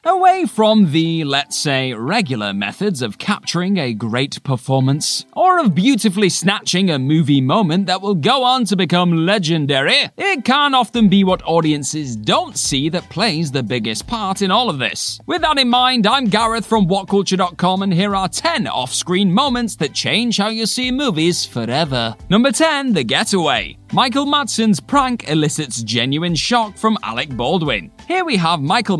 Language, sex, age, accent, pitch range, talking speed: English, male, 30-49, British, 150-230 Hz, 170 wpm